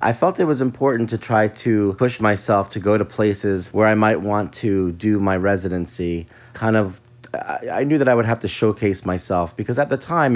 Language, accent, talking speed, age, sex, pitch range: English, American, 215 wpm, 30-49, male, 90-110 Hz